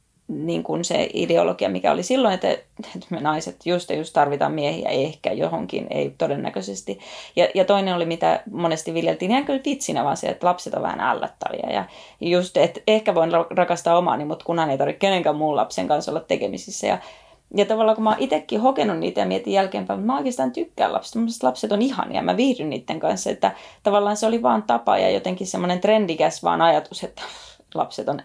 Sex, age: female, 30-49